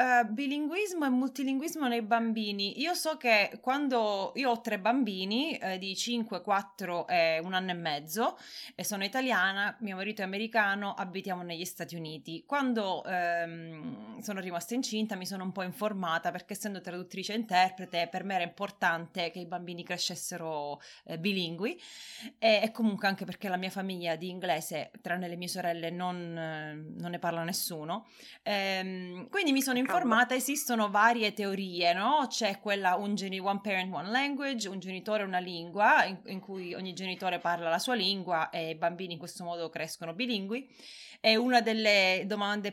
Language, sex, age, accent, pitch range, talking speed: Italian, female, 20-39, native, 180-225 Hz, 170 wpm